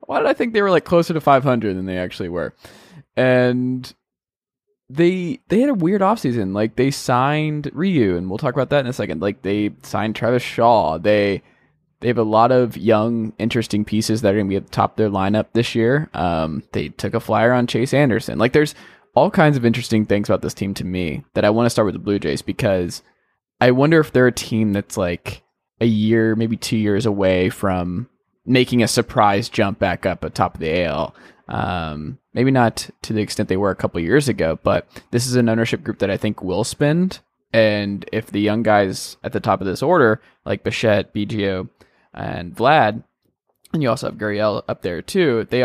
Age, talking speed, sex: 20-39, 215 wpm, male